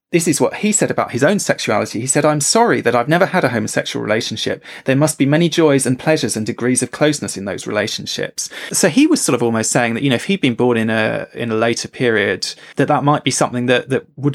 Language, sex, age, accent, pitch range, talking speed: English, male, 20-39, British, 115-150 Hz, 260 wpm